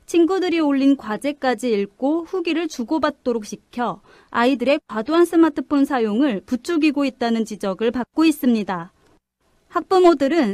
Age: 30-49